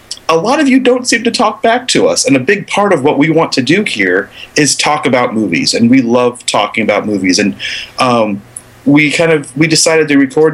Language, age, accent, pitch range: English, 30-49, American, 130-195 Hz